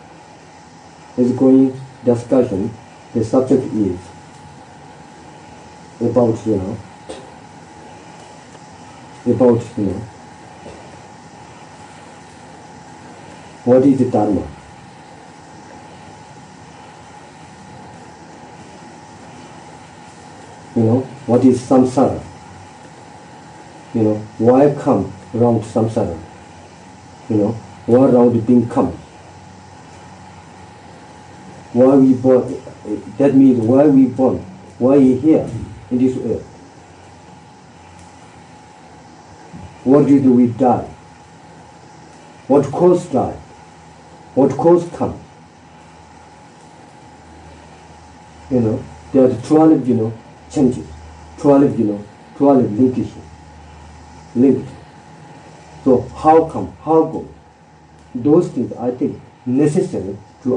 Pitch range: 85-125 Hz